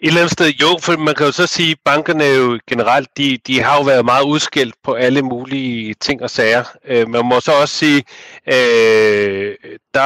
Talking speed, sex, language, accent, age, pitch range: 220 wpm, male, Danish, native, 40-59, 120-150 Hz